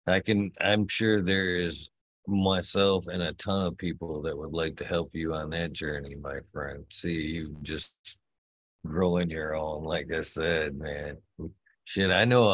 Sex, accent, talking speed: male, American, 170 wpm